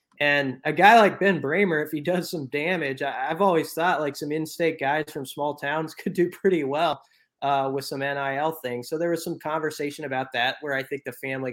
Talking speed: 220 wpm